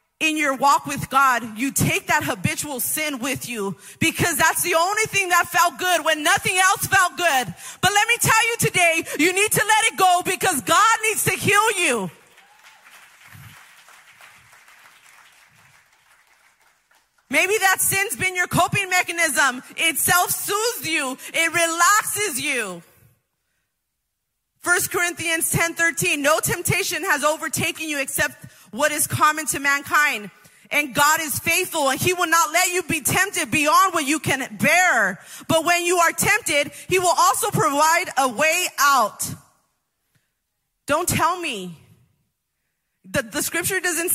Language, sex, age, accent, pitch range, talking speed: English, female, 30-49, American, 235-350 Hz, 145 wpm